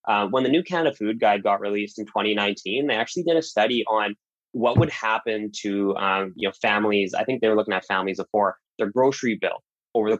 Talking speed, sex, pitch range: 225 wpm, male, 100-120 Hz